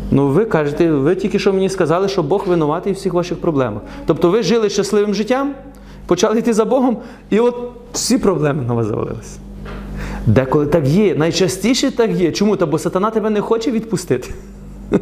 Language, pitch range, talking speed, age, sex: Ukrainian, 175-240 Hz, 180 wpm, 30-49, male